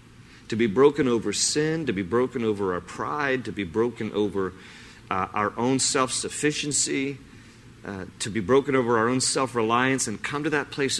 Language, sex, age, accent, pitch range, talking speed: English, male, 40-59, American, 115-145 Hz, 170 wpm